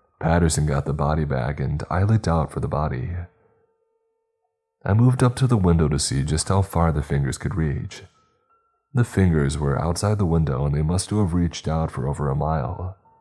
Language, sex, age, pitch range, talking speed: English, male, 30-49, 75-105 Hz, 195 wpm